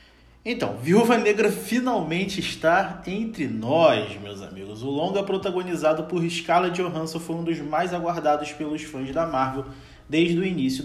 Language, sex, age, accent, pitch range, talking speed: Portuguese, male, 20-39, Brazilian, 155-200 Hz, 150 wpm